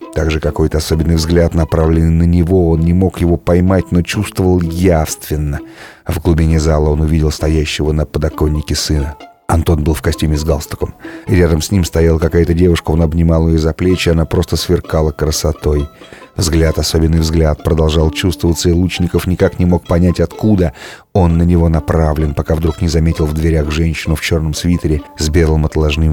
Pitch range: 80-90 Hz